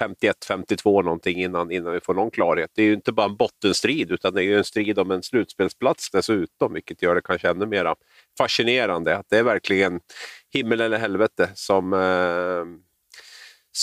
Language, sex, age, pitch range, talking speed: Swedish, male, 40-59, 95-110 Hz, 175 wpm